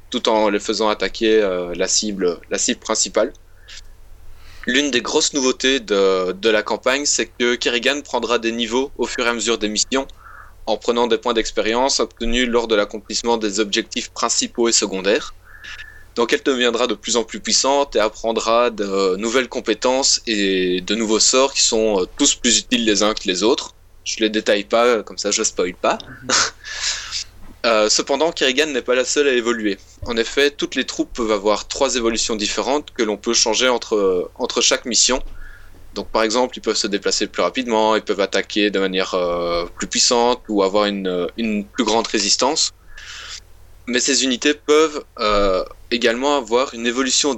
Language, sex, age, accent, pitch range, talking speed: French, male, 20-39, French, 105-130 Hz, 180 wpm